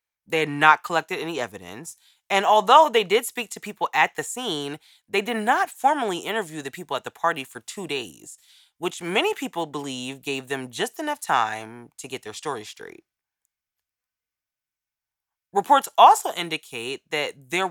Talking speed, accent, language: 165 wpm, American, English